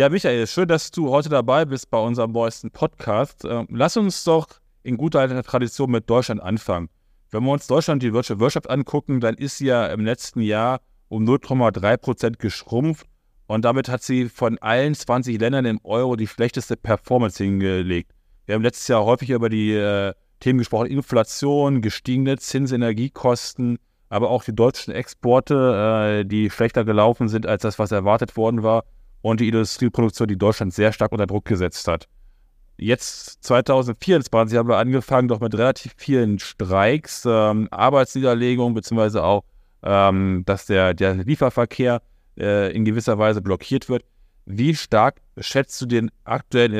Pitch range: 105-125 Hz